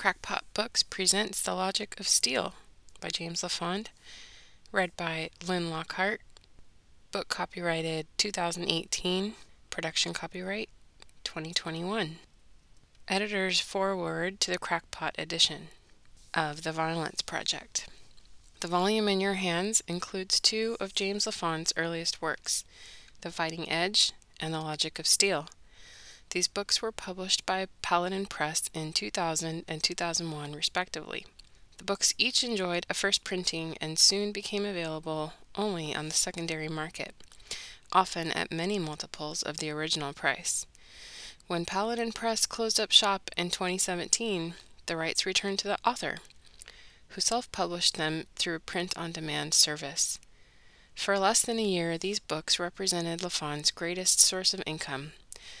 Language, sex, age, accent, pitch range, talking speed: English, female, 20-39, American, 160-195 Hz, 130 wpm